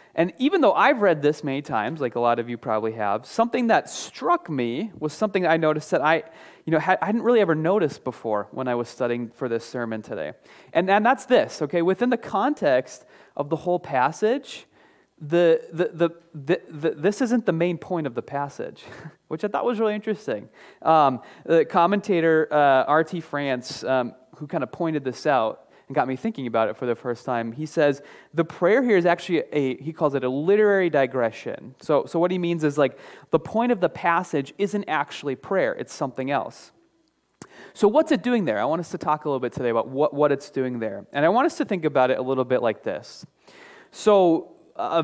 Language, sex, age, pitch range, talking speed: English, male, 30-49, 135-185 Hz, 215 wpm